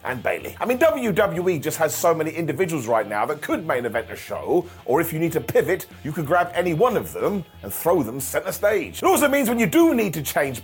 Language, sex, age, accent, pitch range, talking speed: English, male, 30-49, British, 150-210 Hz, 255 wpm